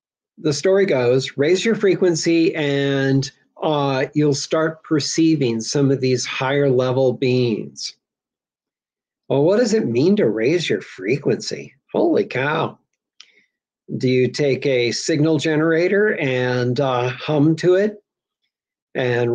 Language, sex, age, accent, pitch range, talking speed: English, male, 50-69, American, 125-155 Hz, 125 wpm